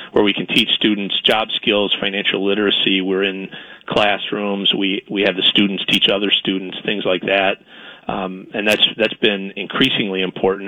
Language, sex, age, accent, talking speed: English, male, 40-59, American, 170 wpm